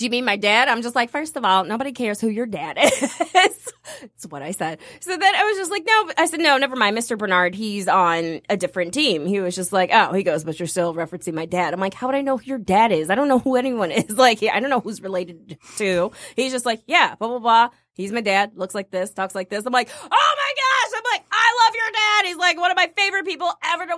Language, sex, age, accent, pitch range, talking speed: English, female, 20-39, American, 205-340 Hz, 280 wpm